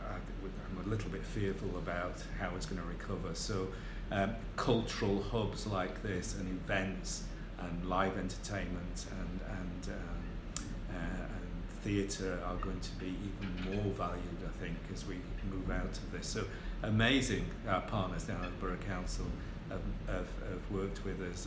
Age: 40-59